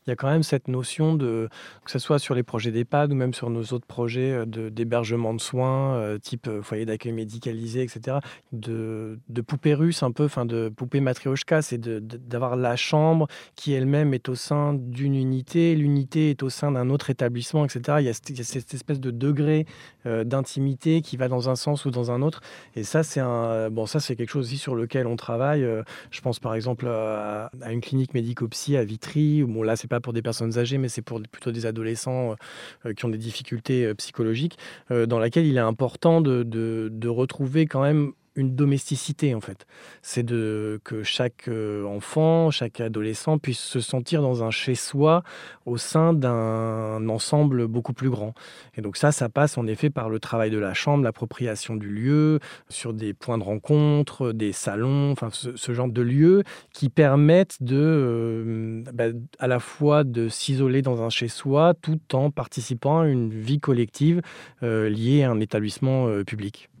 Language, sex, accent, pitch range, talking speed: French, male, French, 115-145 Hz, 195 wpm